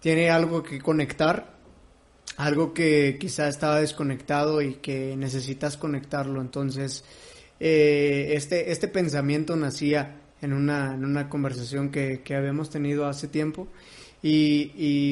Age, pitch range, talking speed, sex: 20-39, 140-155 Hz, 125 wpm, male